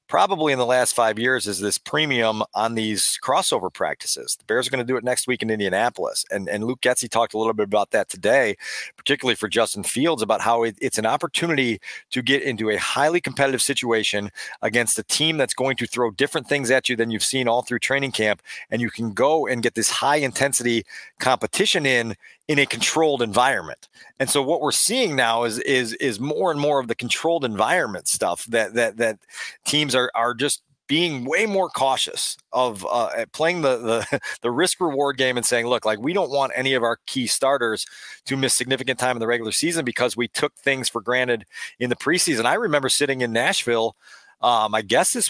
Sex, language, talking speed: male, English, 210 wpm